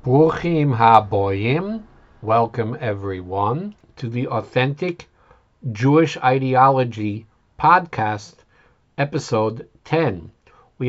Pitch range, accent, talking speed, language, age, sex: 110-155 Hz, American, 70 wpm, English, 60-79, male